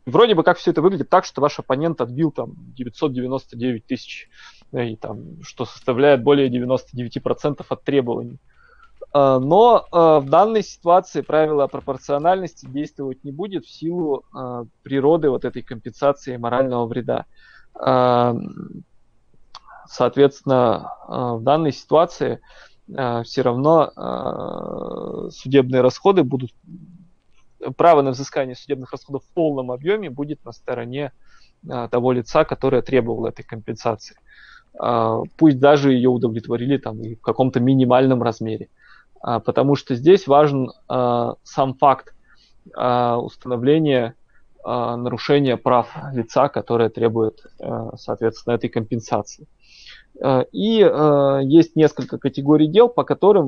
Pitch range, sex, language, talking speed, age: 120-145 Hz, male, Russian, 120 wpm, 20-39